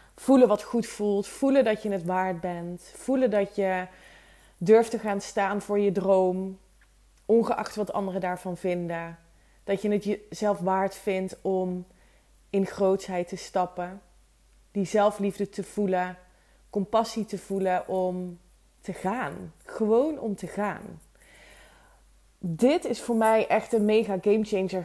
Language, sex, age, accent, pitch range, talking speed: Dutch, female, 20-39, Dutch, 185-225 Hz, 140 wpm